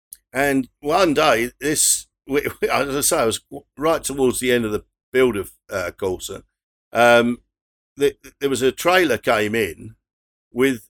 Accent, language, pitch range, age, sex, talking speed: British, English, 110-145 Hz, 50-69, male, 160 wpm